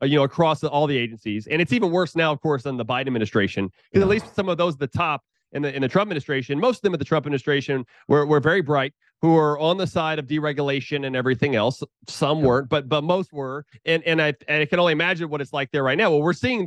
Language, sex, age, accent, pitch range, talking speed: English, male, 30-49, American, 135-165 Hz, 275 wpm